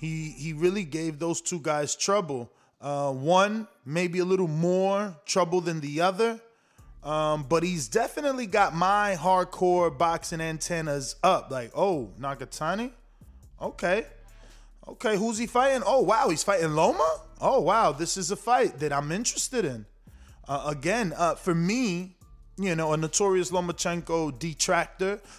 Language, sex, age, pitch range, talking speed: English, male, 20-39, 150-190 Hz, 145 wpm